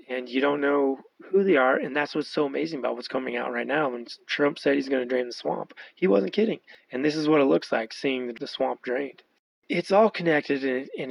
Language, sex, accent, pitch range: English, male, American, 125-150 Hz